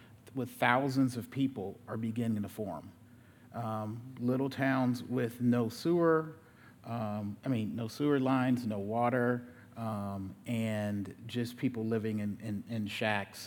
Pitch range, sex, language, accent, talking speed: 110-125 Hz, male, English, American, 140 wpm